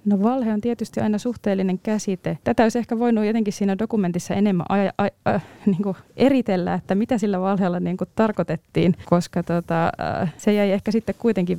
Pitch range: 170-210 Hz